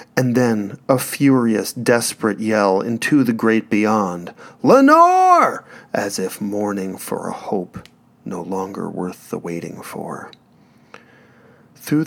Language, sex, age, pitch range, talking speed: English, male, 40-59, 95-120 Hz, 120 wpm